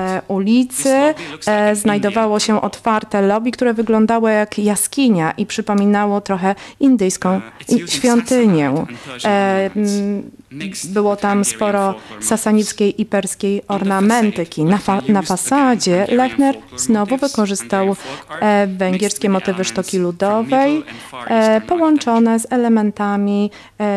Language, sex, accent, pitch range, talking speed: Polish, female, native, 190-220 Hz, 90 wpm